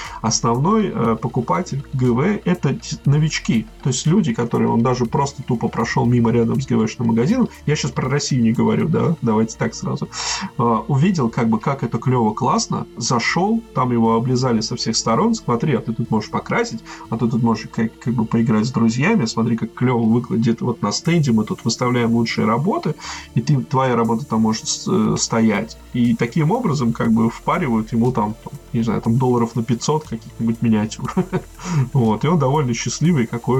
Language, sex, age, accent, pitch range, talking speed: Russian, male, 20-39, native, 115-155 Hz, 180 wpm